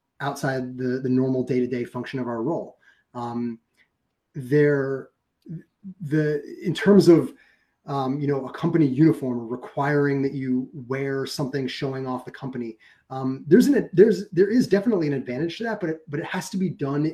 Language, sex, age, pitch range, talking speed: English, male, 30-49, 125-155 Hz, 180 wpm